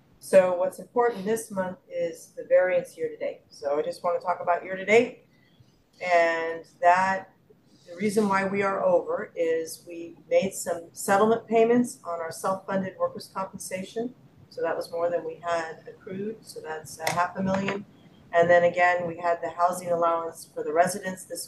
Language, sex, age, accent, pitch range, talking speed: English, female, 30-49, American, 165-220 Hz, 175 wpm